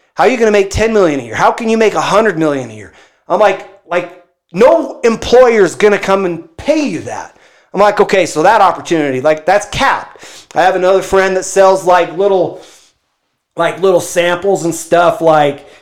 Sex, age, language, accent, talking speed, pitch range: male, 30-49, English, American, 210 wpm, 150-185 Hz